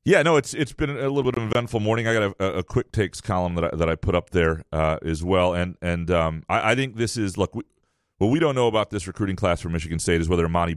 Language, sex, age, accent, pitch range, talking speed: English, male, 30-49, American, 85-105 Hz, 295 wpm